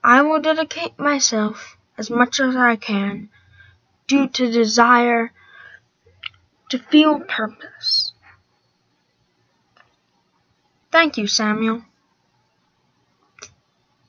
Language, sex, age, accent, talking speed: English, female, 10-29, American, 75 wpm